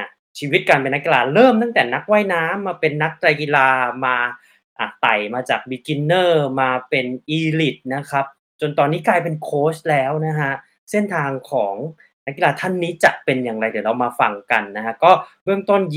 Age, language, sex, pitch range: 20-39, Thai, male, 135-185 Hz